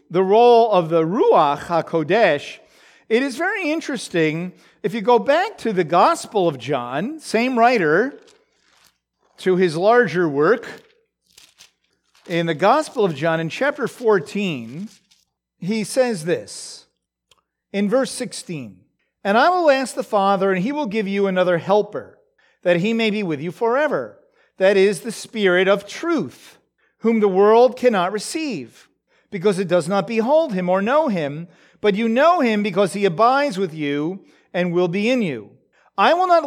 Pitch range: 185-265 Hz